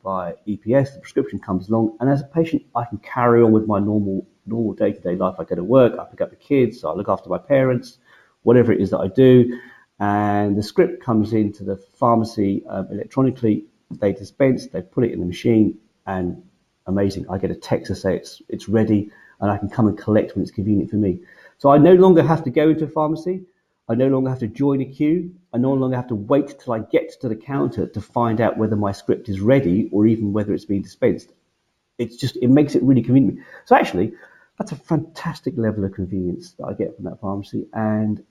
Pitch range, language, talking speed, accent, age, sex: 105-140 Hz, English, 230 wpm, British, 40-59, male